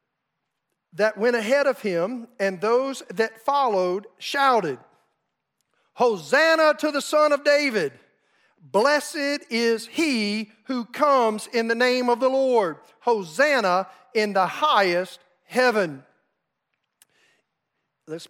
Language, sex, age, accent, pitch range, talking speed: English, male, 40-59, American, 190-255 Hz, 110 wpm